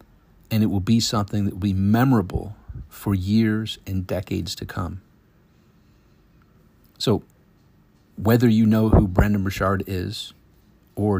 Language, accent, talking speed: English, American, 130 wpm